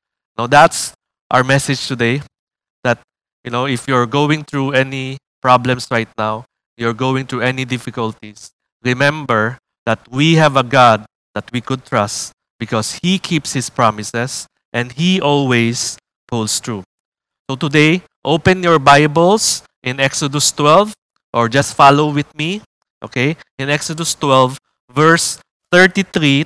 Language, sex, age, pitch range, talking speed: English, male, 20-39, 125-155 Hz, 135 wpm